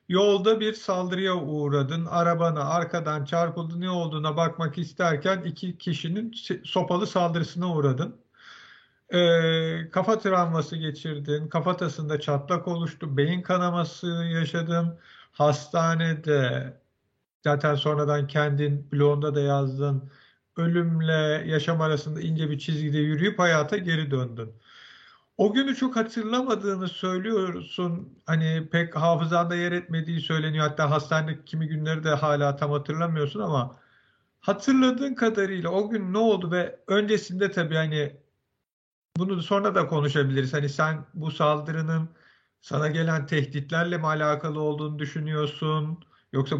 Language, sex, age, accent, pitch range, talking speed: Turkish, male, 50-69, native, 150-180 Hz, 115 wpm